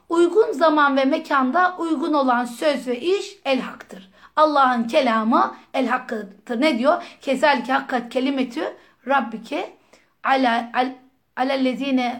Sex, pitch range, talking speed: female, 240-295 Hz, 105 wpm